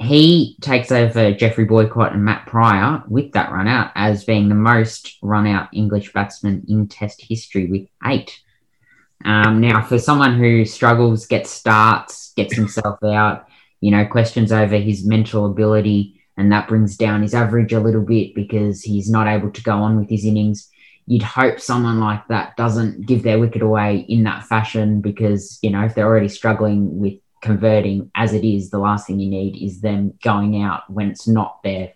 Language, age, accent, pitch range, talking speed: English, 10-29, Australian, 100-110 Hz, 190 wpm